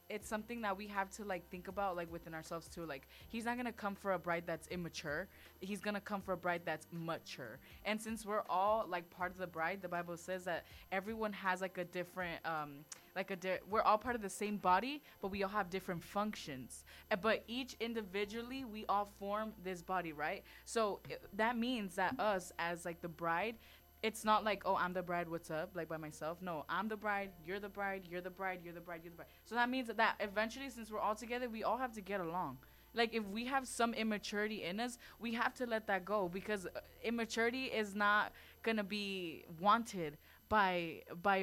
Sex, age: female, 20-39